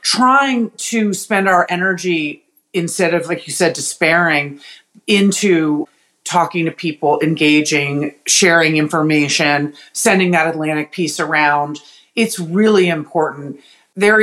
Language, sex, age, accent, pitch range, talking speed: English, female, 40-59, American, 150-180 Hz, 115 wpm